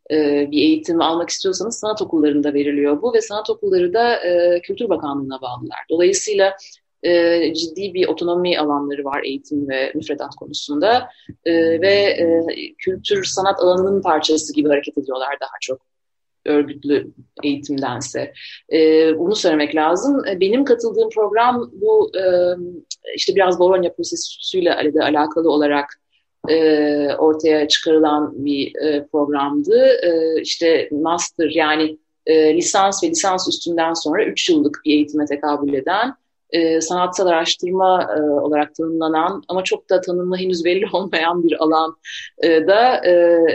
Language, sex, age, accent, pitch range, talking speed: Turkish, female, 30-49, native, 150-200 Hz, 120 wpm